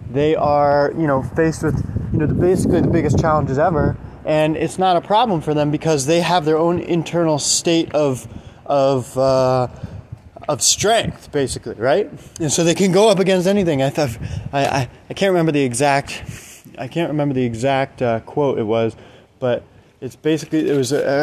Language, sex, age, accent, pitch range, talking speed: English, male, 20-39, American, 120-155 Hz, 185 wpm